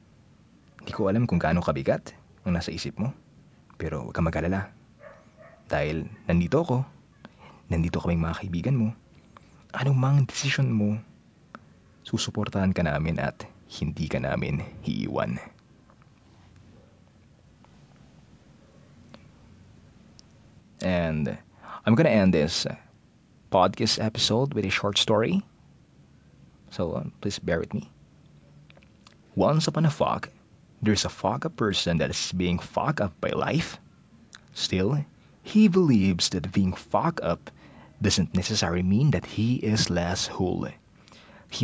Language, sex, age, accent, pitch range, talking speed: Filipino, male, 20-39, native, 90-120 Hz, 115 wpm